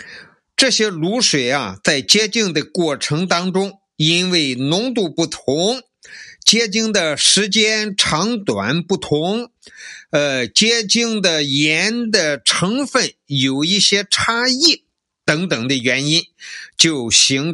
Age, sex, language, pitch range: 50-69, male, Chinese, 140-205 Hz